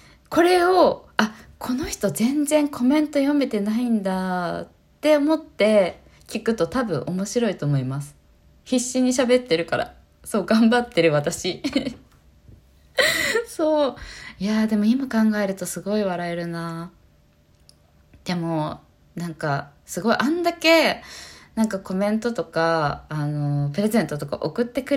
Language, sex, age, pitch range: Japanese, female, 20-39, 165-255 Hz